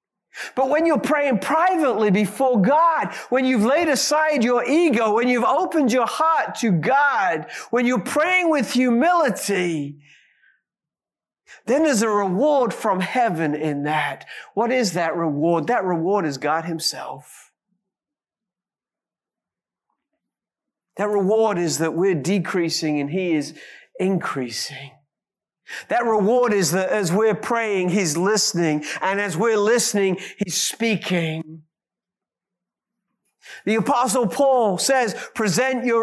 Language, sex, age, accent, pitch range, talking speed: English, male, 50-69, American, 185-255 Hz, 125 wpm